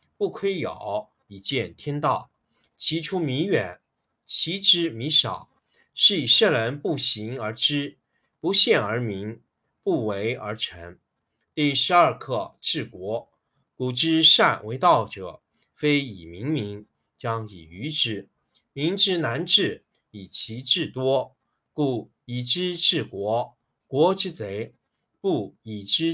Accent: native